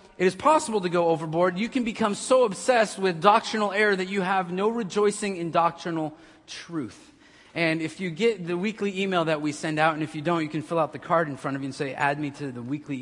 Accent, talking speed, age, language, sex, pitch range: American, 250 wpm, 30-49, English, male, 165-210 Hz